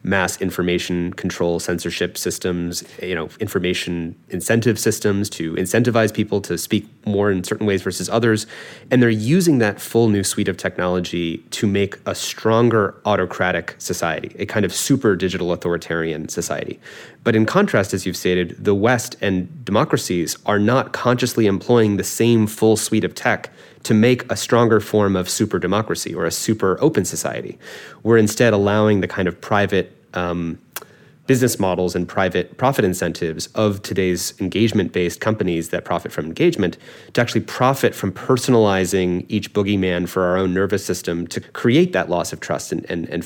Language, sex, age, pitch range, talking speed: English, male, 30-49, 90-115 Hz, 165 wpm